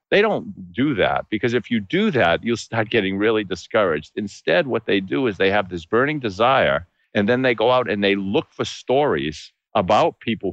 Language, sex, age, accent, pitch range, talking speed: English, male, 50-69, American, 90-110 Hz, 205 wpm